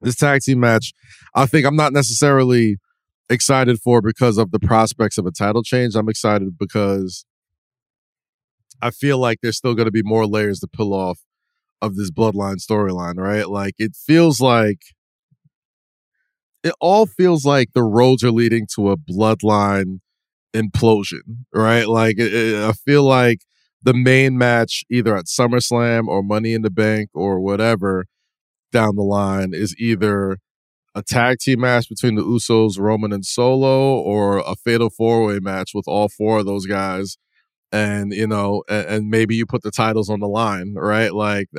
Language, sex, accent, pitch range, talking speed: English, male, American, 105-120 Hz, 165 wpm